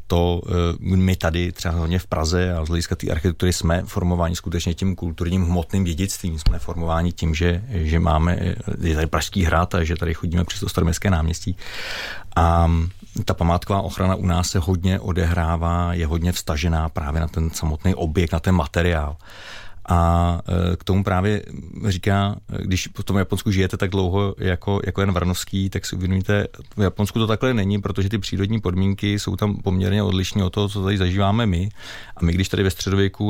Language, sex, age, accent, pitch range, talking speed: Czech, male, 30-49, native, 85-100 Hz, 180 wpm